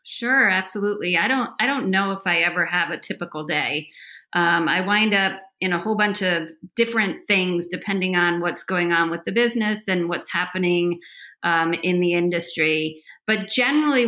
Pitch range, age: 175-210 Hz, 30-49